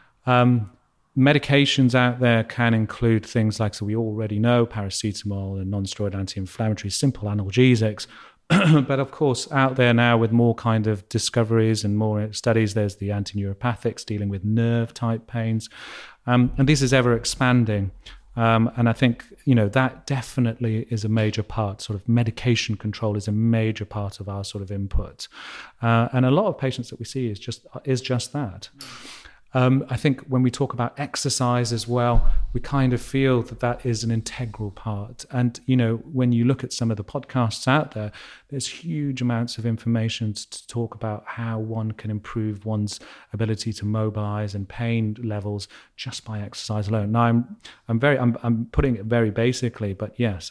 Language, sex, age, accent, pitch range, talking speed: English, male, 30-49, British, 105-125 Hz, 180 wpm